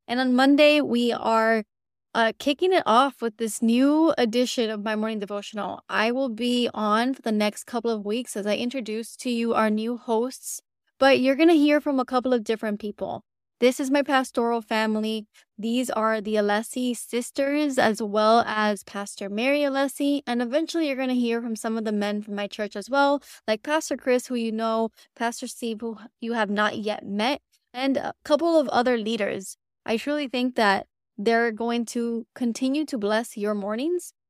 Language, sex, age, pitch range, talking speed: English, female, 20-39, 215-255 Hz, 190 wpm